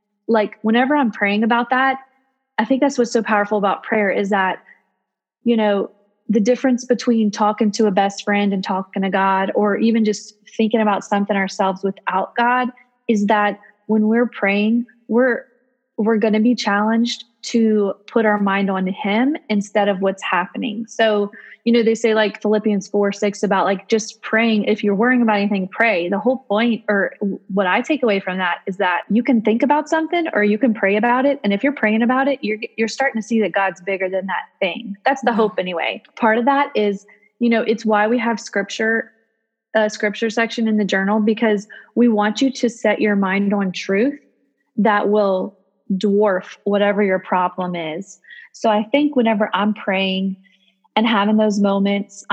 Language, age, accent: English, 20-39, American